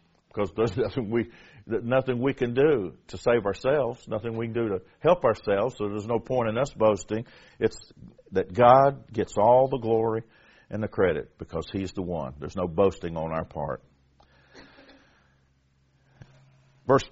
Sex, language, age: male, English, 50-69